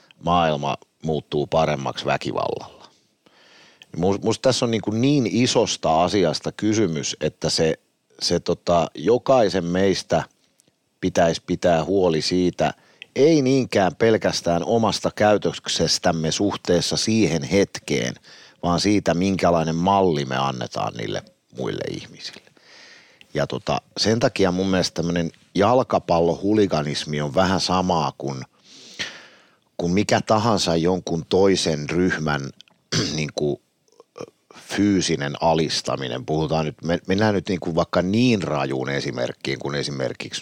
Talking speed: 100 wpm